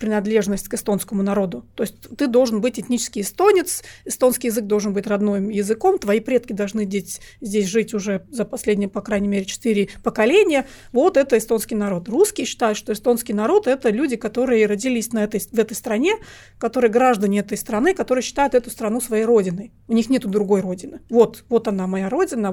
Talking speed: 180 wpm